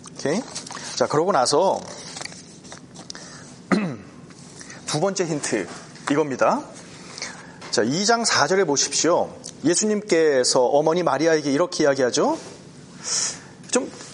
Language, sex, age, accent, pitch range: Korean, male, 30-49, native, 155-220 Hz